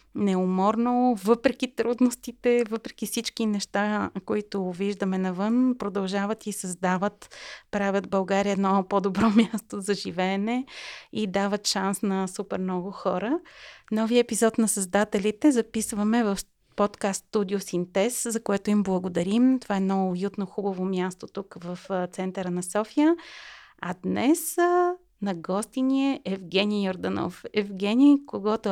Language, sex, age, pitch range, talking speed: Bulgarian, female, 30-49, 195-235 Hz, 125 wpm